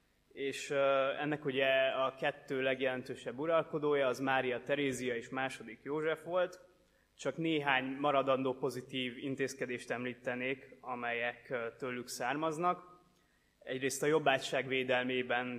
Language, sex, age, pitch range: Hungarian, male, 20-39, 125-145 Hz